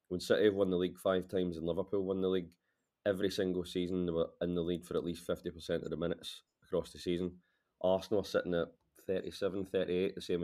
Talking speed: 225 wpm